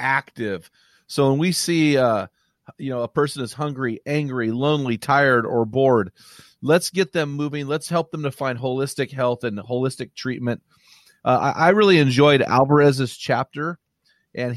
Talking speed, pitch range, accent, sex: 160 wpm, 130-170 Hz, American, male